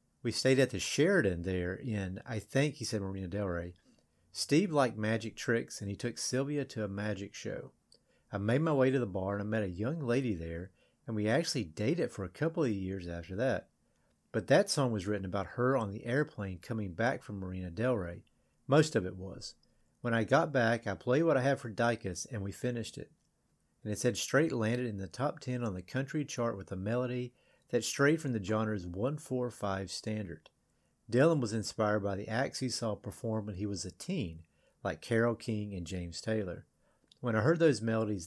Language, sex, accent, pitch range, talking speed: English, male, American, 95-125 Hz, 210 wpm